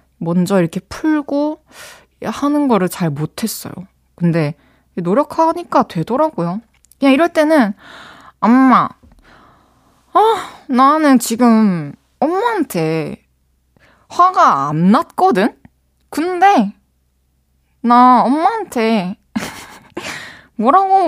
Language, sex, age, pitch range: Korean, female, 20-39, 185-270 Hz